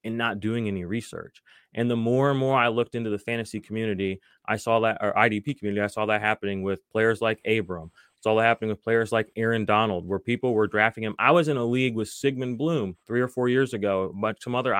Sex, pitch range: male, 110-135 Hz